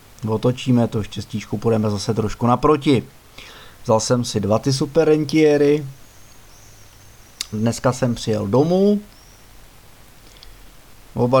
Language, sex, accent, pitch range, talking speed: Czech, male, native, 110-130 Hz, 100 wpm